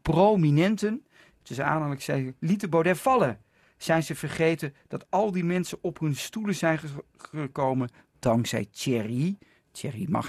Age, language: 50-69, Dutch